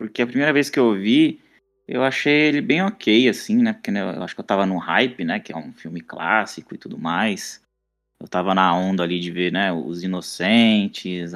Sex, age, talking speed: male, 20-39, 220 wpm